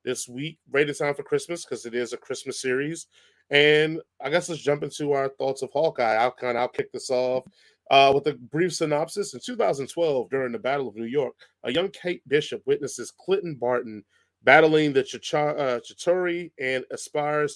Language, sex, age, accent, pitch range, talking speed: English, male, 30-49, American, 135-170 Hz, 190 wpm